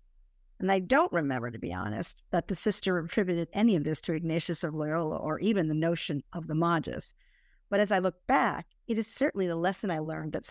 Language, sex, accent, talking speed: English, female, American, 215 wpm